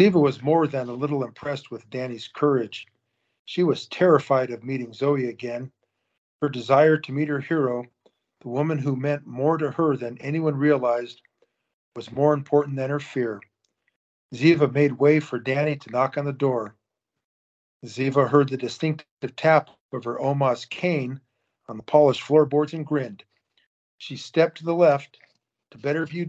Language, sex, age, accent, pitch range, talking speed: English, male, 50-69, American, 120-150 Hz, 165 wpm